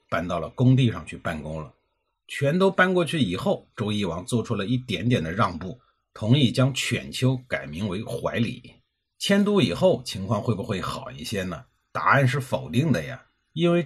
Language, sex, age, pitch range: Chinese, male, 50-69, 100-140 Hz